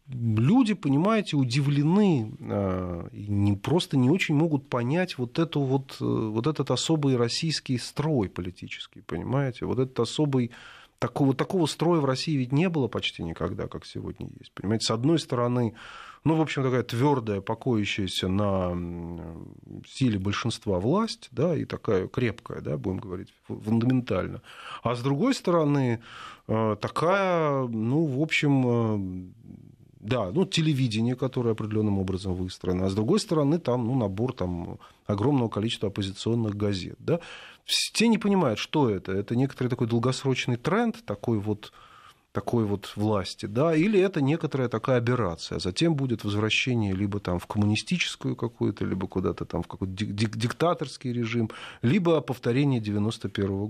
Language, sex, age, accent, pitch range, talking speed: Russian, male, 30-49, native, 105-145 Hz, 140 wpm